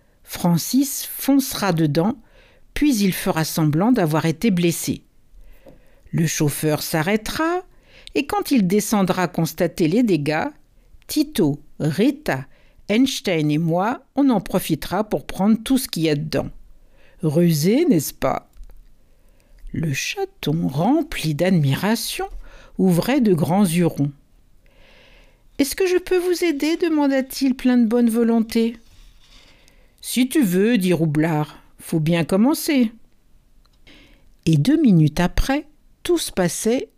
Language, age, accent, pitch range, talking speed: French, 60-79, French, 160-245 Hz, 120 wpm